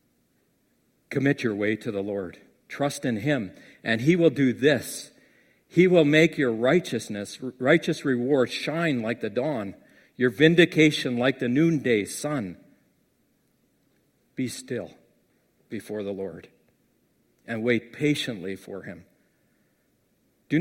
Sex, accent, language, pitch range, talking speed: male, American, English, 110-140 Hz, 120 wpm